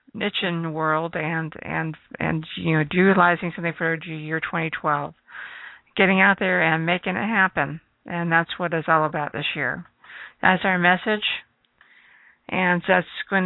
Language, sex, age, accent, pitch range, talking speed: English, female, 50-69, American, 165-200 Hz, 155 wpm